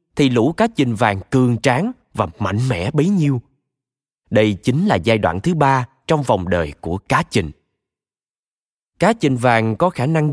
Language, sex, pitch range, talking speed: Vietnamese, male, 105-160 Hz, 180 wpm